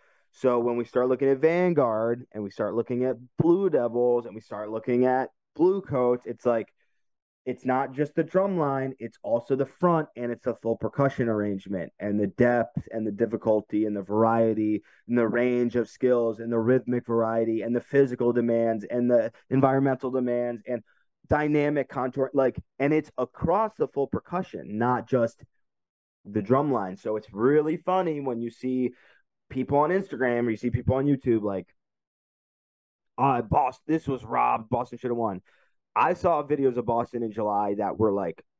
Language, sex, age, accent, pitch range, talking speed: English, male, 20-39, American, 115-135 Hz, 175 wpm